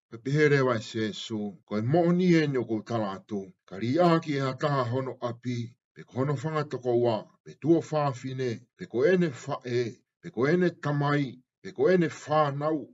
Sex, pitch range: male, 115-150 Hz